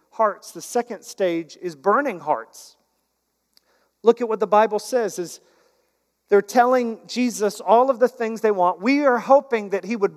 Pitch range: 215-265 Hz